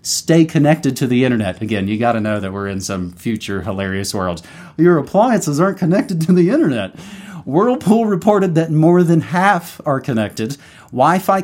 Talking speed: 170 wpm